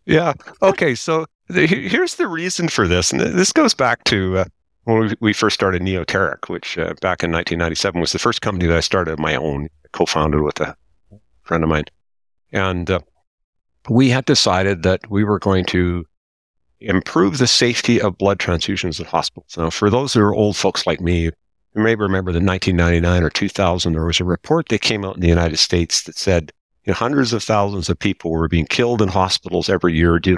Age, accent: 50-69, American